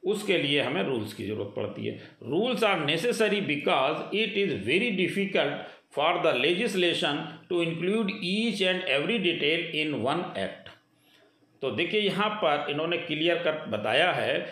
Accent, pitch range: native, 160-210 Hz